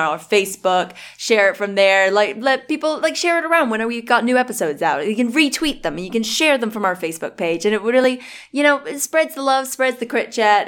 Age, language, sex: 20-39, English, female